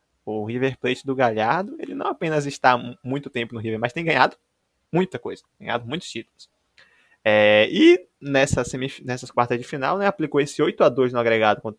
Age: 20-39